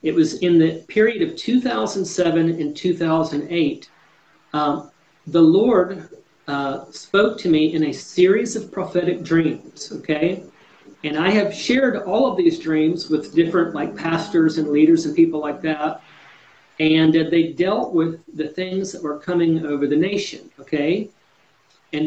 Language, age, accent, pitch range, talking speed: English, 40-59, American, 160-200 Hz, 150 wpm